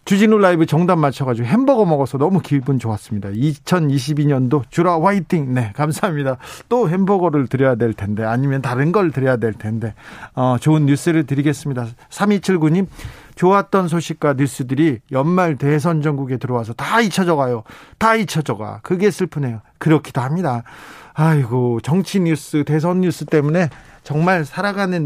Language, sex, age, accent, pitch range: Korean, male, 40-59, native, 130-165 Hz